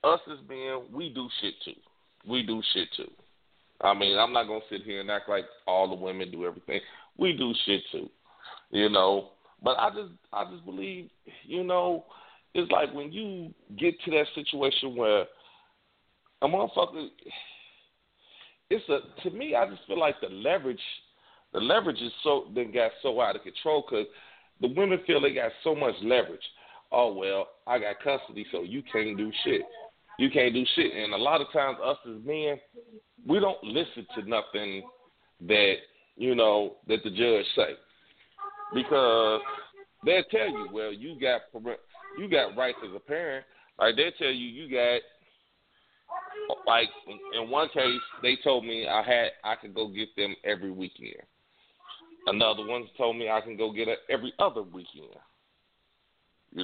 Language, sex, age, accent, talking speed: English, male, 40-59, American, 175 wpm